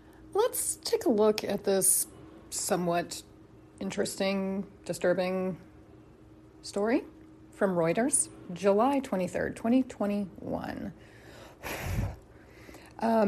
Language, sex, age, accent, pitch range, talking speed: English, female, 30-49, American, 175-230 Hz, 70 wpm